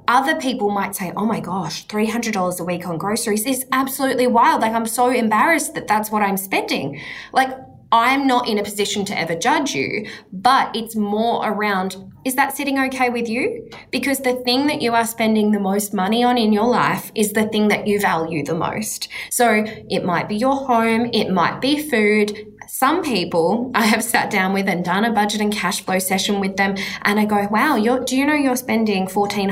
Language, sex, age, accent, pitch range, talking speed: English, female, 20-39, Australian, 190-250 Hz, 210 wpm